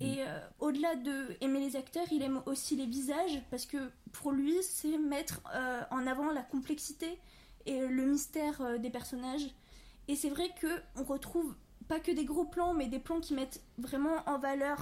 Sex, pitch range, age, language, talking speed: female, 265-315 Hz, 20-39, French, 185 wpm